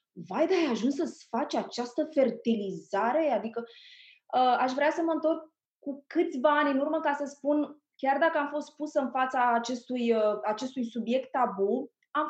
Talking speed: 165 wpm